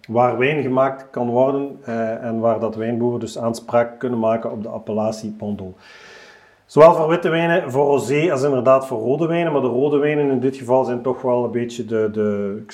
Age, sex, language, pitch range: 40-59, male, Dutch, 115-140 Hz